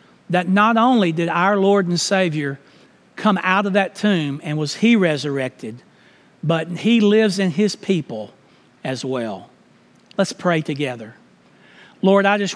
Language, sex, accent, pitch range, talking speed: English, male, American, 165-205 Hz, 150 wpm